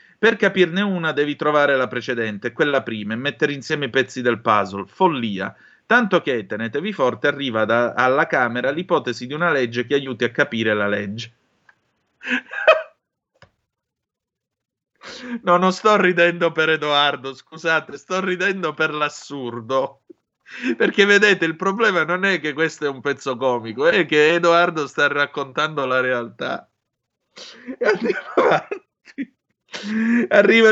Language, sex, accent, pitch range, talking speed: Italian, male, native, 130-180 Hz, 130 wpm